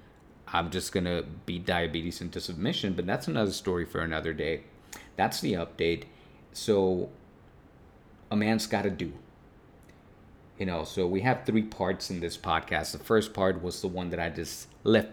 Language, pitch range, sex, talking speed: English, 85-105 Hz, male, 175 wpm